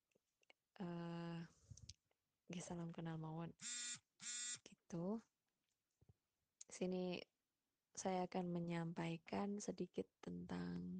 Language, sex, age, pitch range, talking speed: Indonesian, female, 20-39, 180-210 Hz, 60 wpm